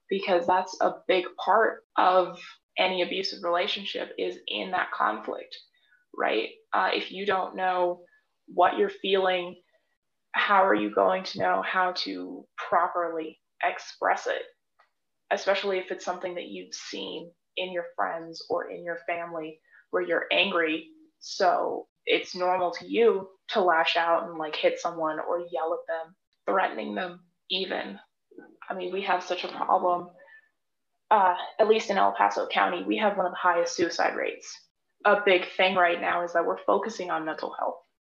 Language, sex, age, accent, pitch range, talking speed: English, female, 20-39, American, 170-200 Hz, 165 wpm